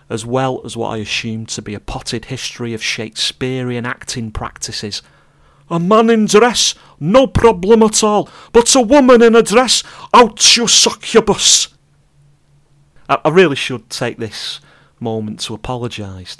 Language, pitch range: English, 105-145 Hz